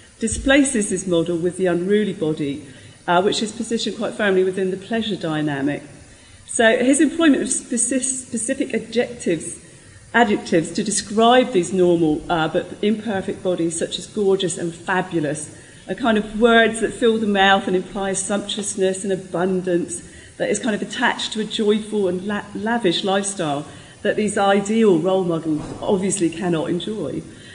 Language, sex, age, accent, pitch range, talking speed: English, female, 40-59, British, 170-220 Hz, 150 wpm